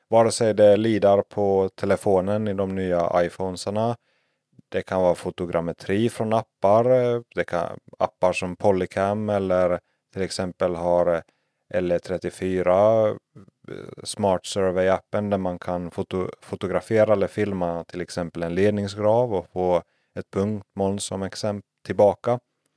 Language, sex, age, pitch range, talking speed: Swedish, male, 30-49, 90-105 Hz, 120 wpm